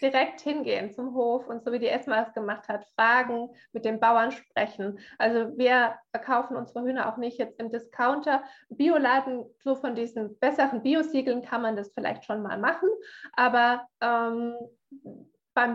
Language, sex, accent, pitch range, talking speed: German, female, German, 220-245 Hz, 165 wpm